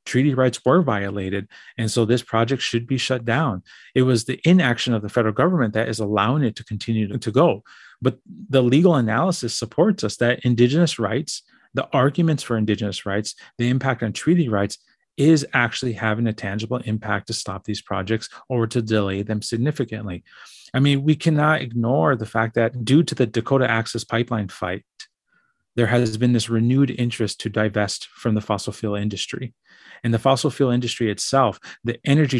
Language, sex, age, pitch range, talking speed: English, male, 30-49, 110-130 Hz, 180 wpm